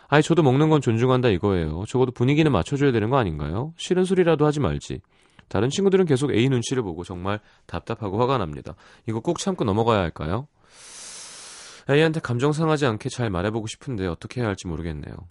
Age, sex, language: 30-49, male, Korean